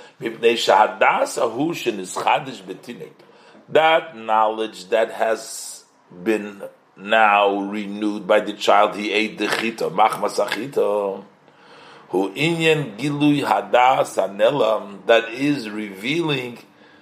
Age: 40-59